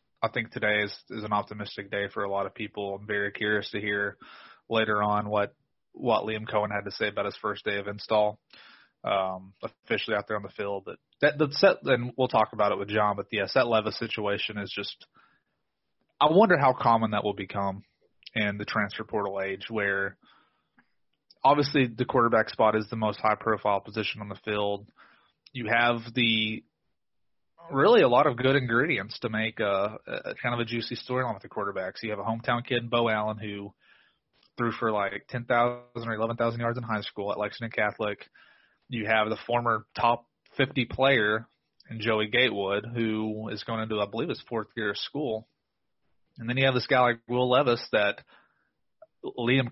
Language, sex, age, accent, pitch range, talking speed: English, male, 20-39, American, 105-120 Hz, 195 wpm